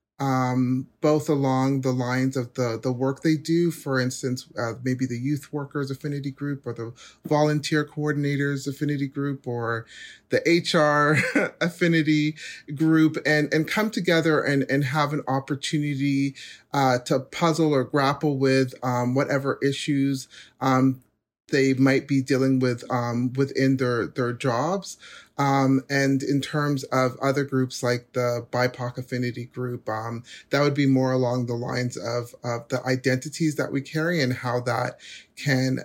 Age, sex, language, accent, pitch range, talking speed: 40-59, male, English, American, 130-145 Hz, 150 wpm